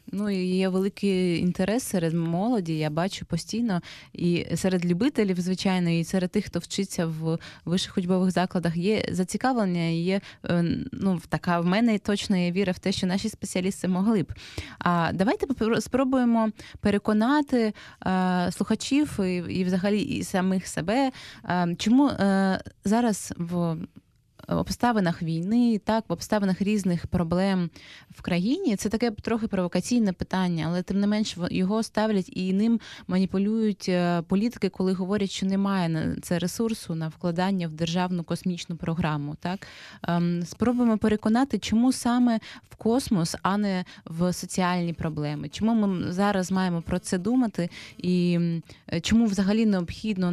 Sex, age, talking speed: female, 20-39, 140 wpm